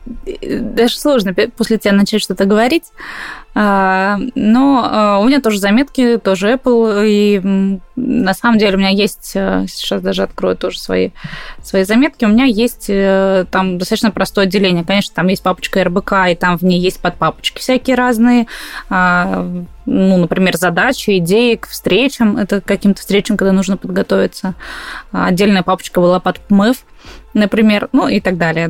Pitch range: 185-235 Hz